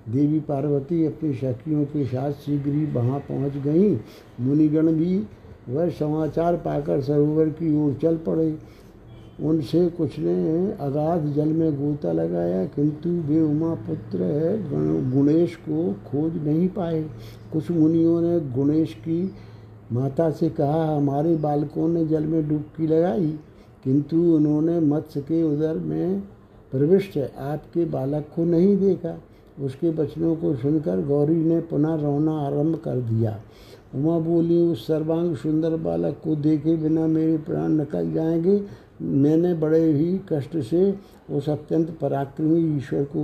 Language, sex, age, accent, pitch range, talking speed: Hindi, male, 60-79, native, 140-165 Hz, 135 wpm